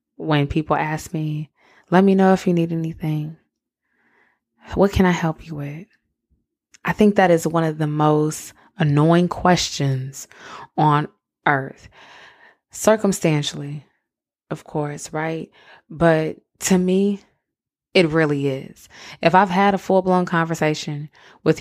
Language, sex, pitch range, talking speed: English, female, 145-175 Hz, 130 wpm